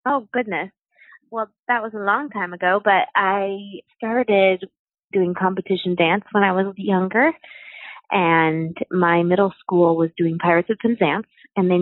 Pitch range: 170-215 Hz